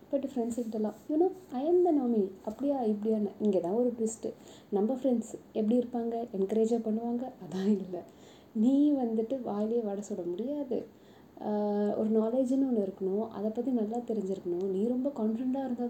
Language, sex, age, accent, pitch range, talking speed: Tamil, female, 20-39, native, 205-250 Hz, 140 wpm